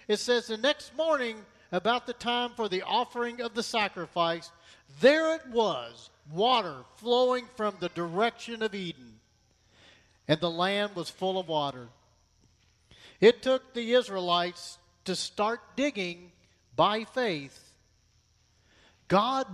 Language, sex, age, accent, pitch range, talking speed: English, male, 50-69, American, 170-255 Hz, 125 wpm